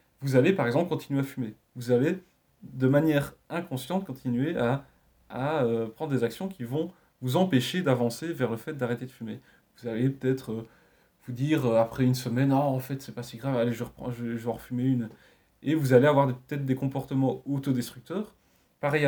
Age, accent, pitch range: 20-39, French, 120-155 Hz